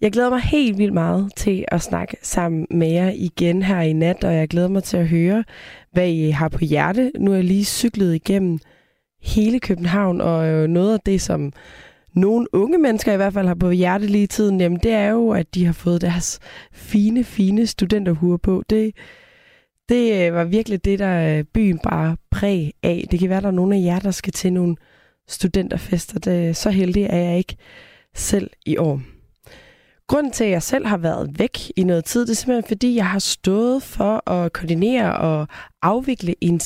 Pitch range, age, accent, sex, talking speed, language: 175-220 Hz, 20-39, native, female, 200 wpm, Danish